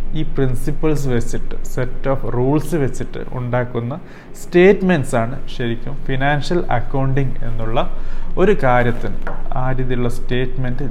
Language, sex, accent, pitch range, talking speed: Malayalam, male, native, 120-145 Hz, 105 wpm